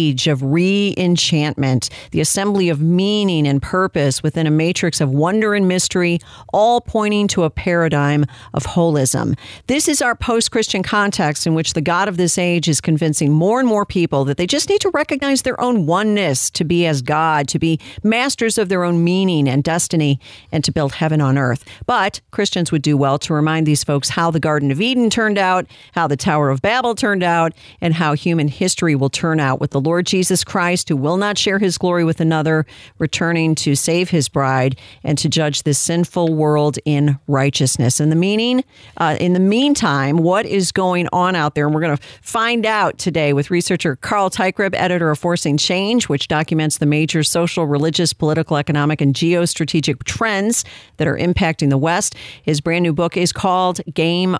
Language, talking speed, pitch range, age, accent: English, 190 wpm, 150-190 Hz, 50-69, American